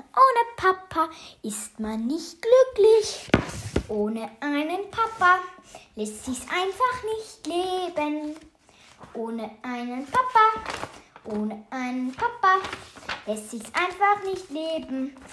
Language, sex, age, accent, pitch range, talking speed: German, female, 10-29, German, 245-395 Hz, 100 wpm